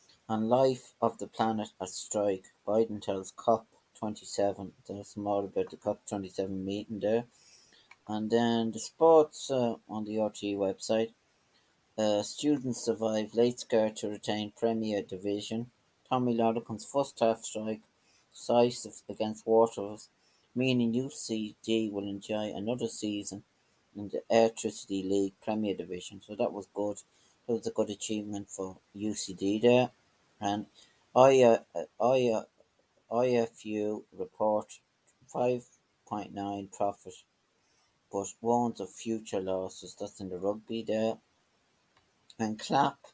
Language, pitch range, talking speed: English, 100-115 Hz, 120 wpm